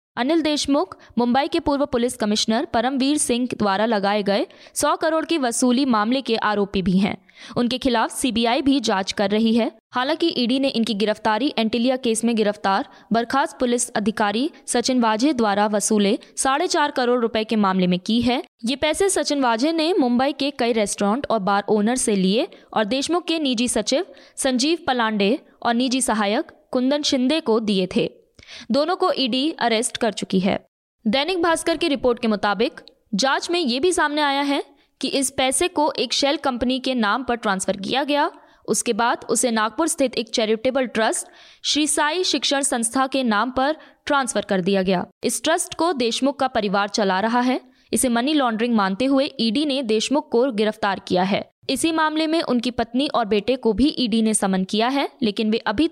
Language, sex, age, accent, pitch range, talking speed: Hindi, female, 20-39, native, 220-285 Hz, 185 wpm